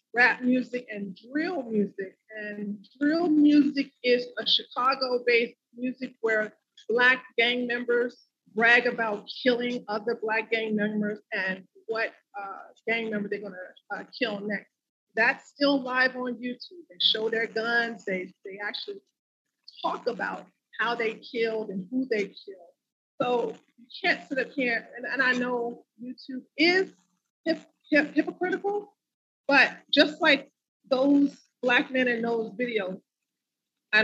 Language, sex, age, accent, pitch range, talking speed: English, female, 40-59, American, 210-255 Hz, 140 wpm